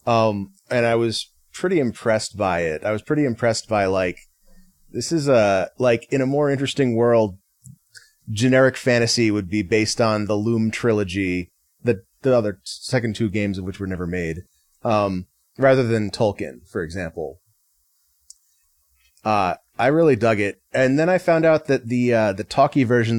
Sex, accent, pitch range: male, American, 100-125 Hz